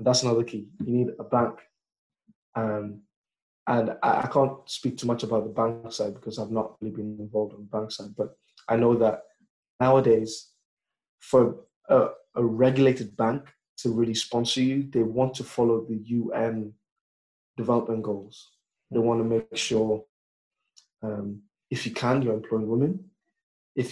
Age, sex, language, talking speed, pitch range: 20-39, male, English, 160 wpm, 110-125 Hz